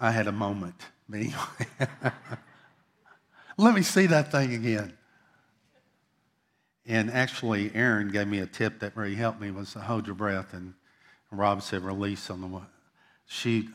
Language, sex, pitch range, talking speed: English, male, 100-115 Hz, 150 wpm